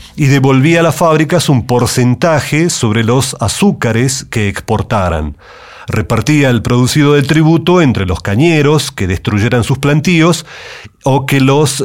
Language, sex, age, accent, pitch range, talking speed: Spanish, male, 40-59, Argentinian, 115-150 Hz, 135 wpm